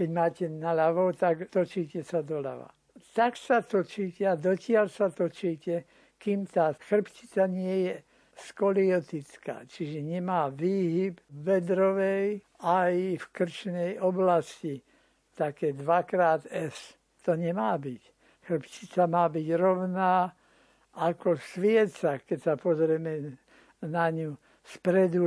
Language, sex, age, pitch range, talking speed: Slovak, male, 60-79, 160-190 Hz, 115 wpm